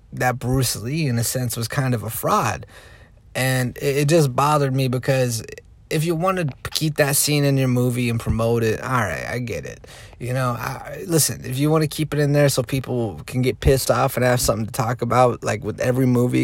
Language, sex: English, male